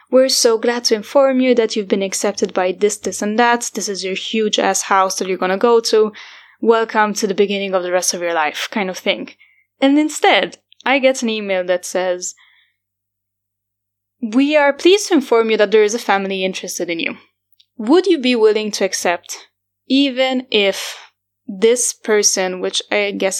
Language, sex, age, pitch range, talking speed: English, female, 10-29, 185-235 Hz, 190 wpm